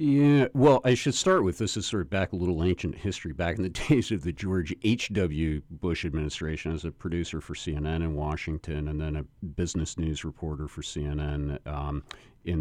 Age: 50-69